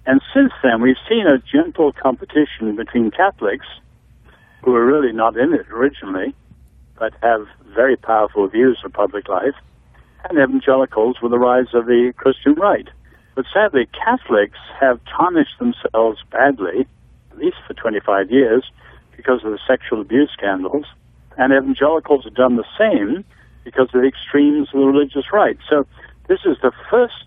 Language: English